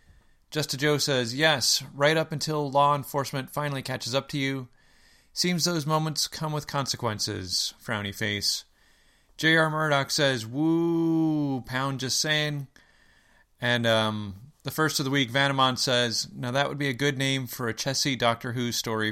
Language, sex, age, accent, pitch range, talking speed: English, male, 30-49, American, 105-145 Hz, 165 wpm